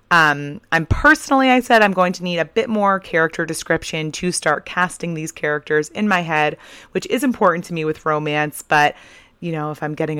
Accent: American